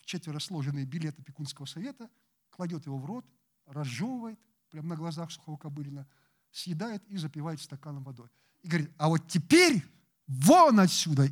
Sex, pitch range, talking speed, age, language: male, 160-215 Hz, 145 wpm, 50-69, Russian